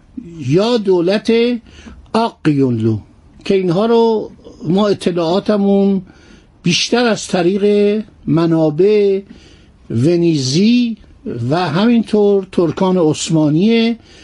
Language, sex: Persian, male